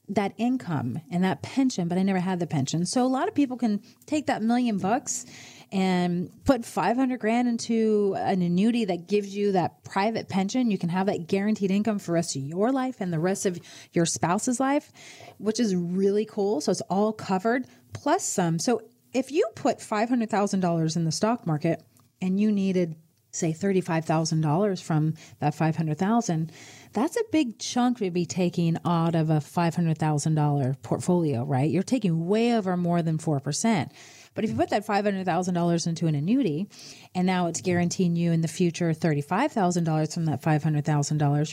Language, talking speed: English, 175 wpm